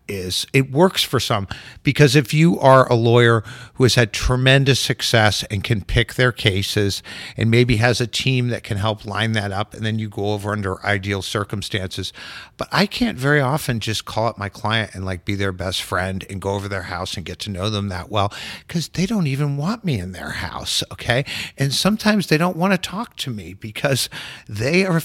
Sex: male